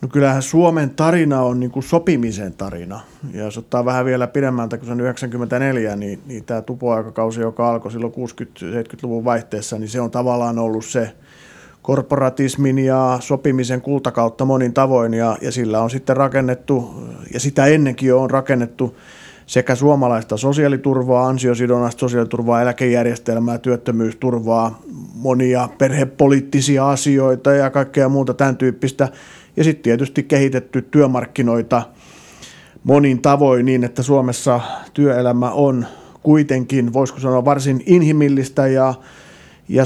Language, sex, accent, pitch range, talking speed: Finnish, male, native, 120-140 Hz, 125 wpm